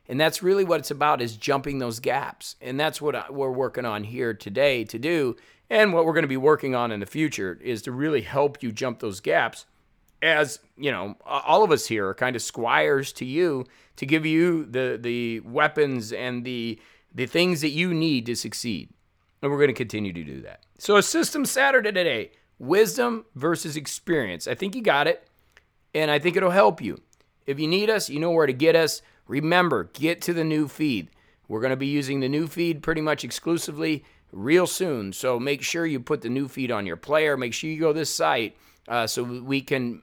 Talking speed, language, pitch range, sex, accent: 215 wpm, English, 115-160 Hz, male, American